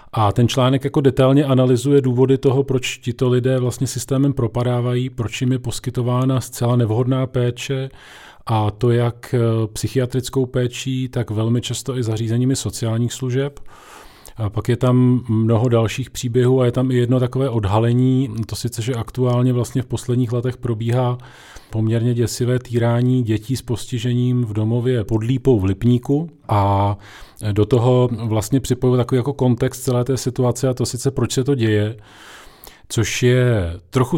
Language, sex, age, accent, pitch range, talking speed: Czech, male, 40-59, native, 115-130 Hz, 155 wpm